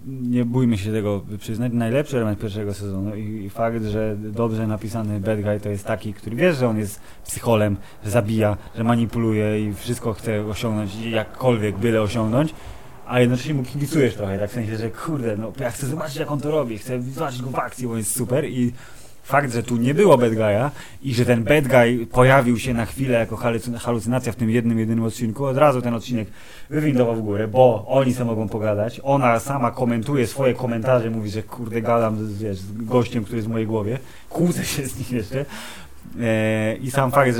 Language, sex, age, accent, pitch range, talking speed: Polish, male, 20-39, native, 110-125 Hz, 200 wpm